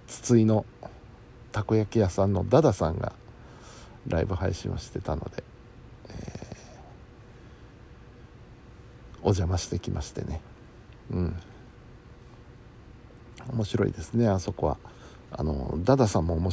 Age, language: 60-79, Japanese